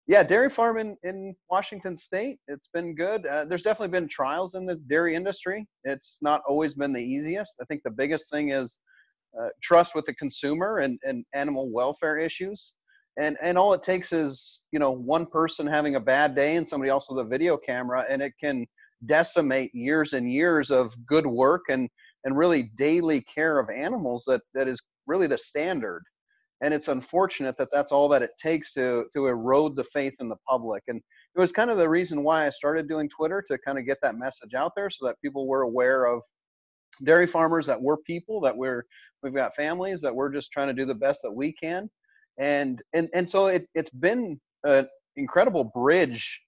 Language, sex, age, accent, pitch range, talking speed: English, male, 30-49, American, 135-175 Hz, 205 wpm